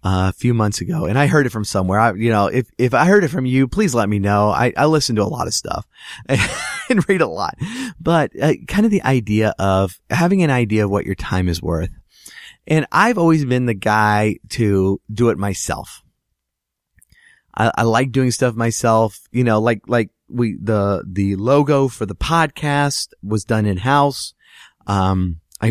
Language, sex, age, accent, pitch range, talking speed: English, male, 30-49, American, 95-130 Hz, 205 wpm